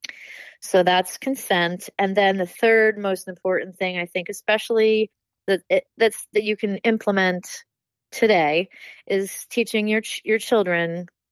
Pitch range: 180-225 Hz